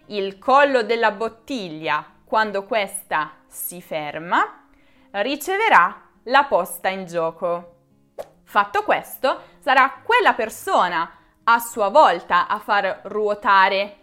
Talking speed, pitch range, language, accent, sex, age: 100 wpm, 190-275 Hz, Italian, native, female, 20-39